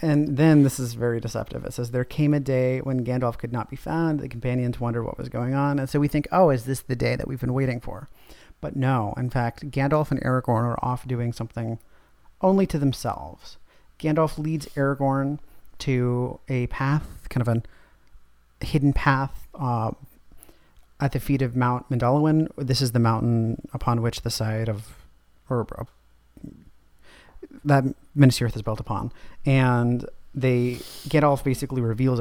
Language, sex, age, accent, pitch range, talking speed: English, male, 40-59, American, 115-135 Hz, 170 wpm